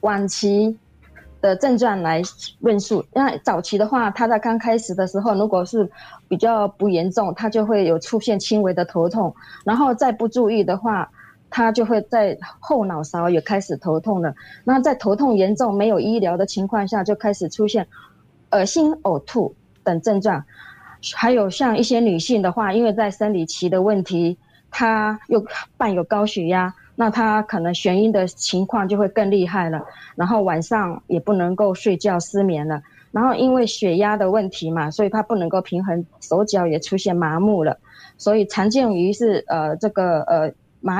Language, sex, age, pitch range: Chinese, female, 20-39, 180-225 Hz